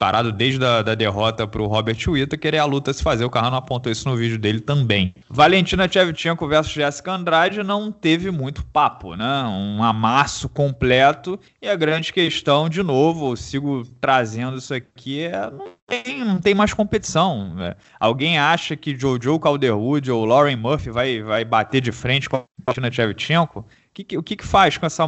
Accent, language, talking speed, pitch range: Brazilian, Portuguese, 185 wpm, 120-165 Hz